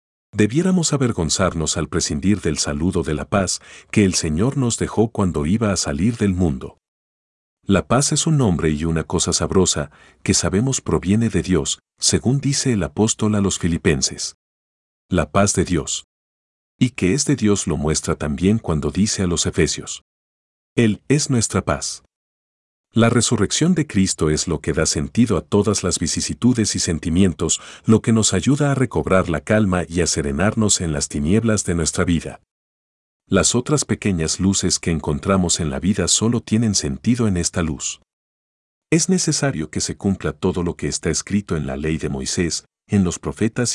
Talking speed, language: 175 wpm, Spanish